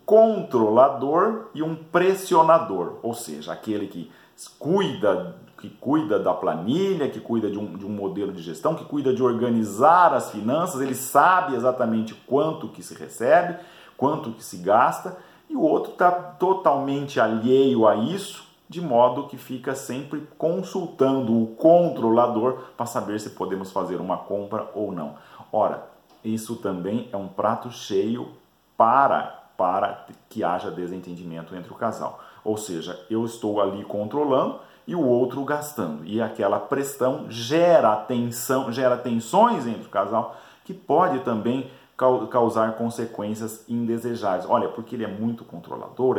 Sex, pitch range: male, 100-140 Hz